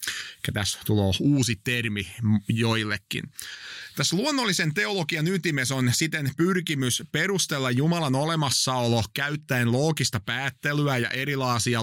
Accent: native